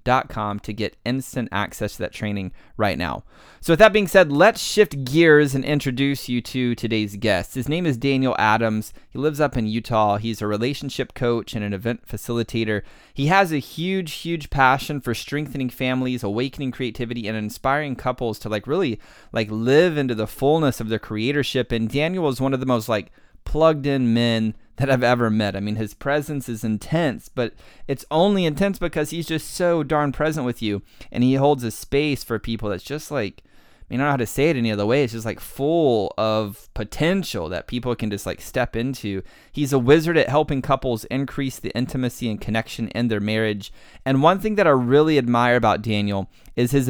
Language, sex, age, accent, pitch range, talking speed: English, male, 30-49, American, 110-145 Hz, 205 wpm